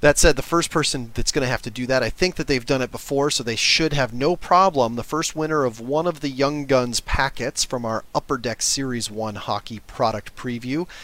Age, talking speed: 30-49, 240 wpm